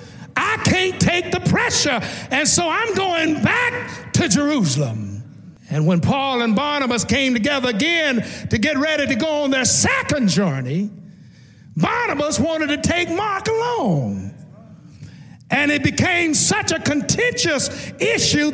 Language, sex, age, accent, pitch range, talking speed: English, male, 50-69, American, 225-330 Hz, 135 wpm